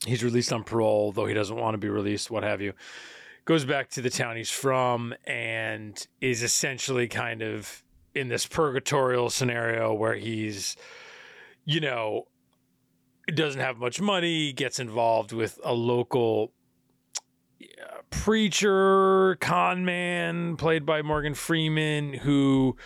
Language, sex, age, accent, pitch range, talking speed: English, male, 30-49, American, 115-140 Hz, 135 wpm